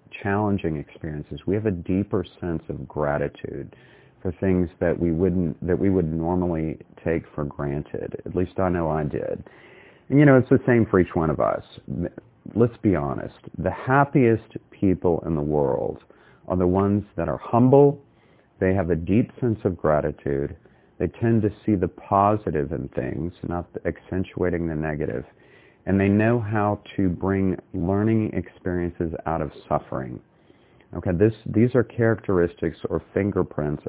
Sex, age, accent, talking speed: male, 40-59, American, 160 wpm